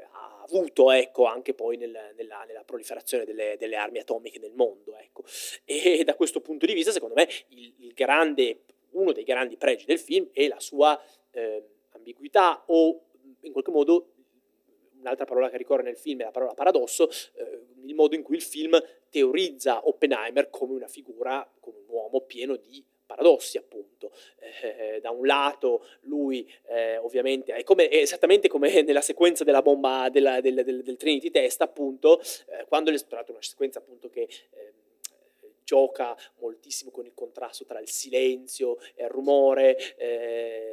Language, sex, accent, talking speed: Italian, male, native, 170 wpm